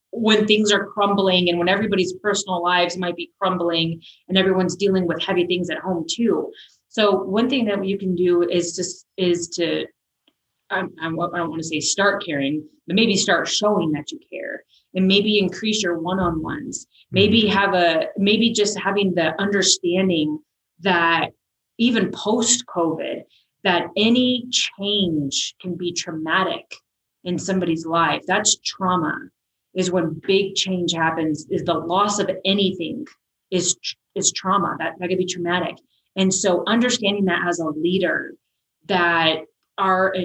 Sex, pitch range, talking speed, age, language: female, 175-205 Hz, 150 wpm, 30-49, English